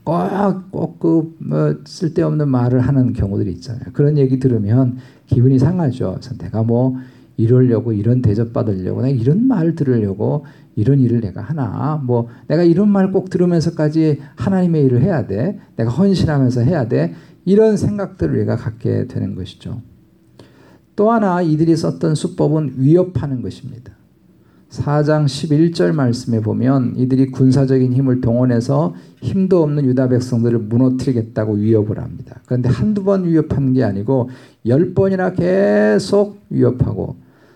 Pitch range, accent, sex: 120-155 Hz, native, male